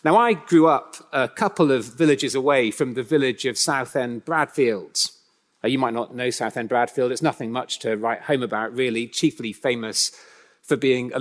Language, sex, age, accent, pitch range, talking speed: English, male, 30-49, British, 120-160 Hz, 185 wpm